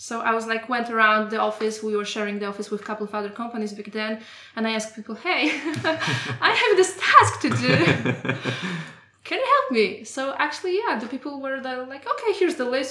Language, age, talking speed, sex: English, 20-39, 230 wpm, female